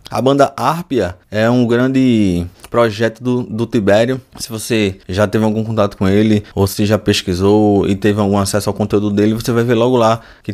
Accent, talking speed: Brazilian, 200 wpm